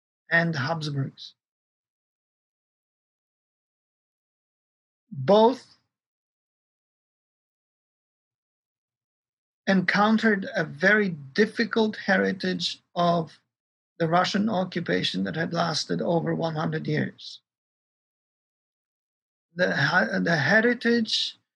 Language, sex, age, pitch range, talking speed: English, male, 50-69, 165-205 Hz, 60 wpm